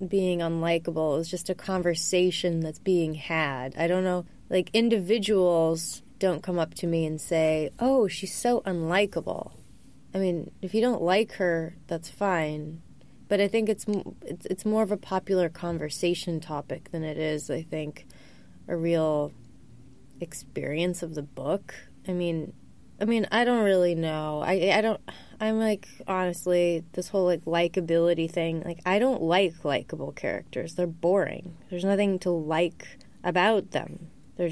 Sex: female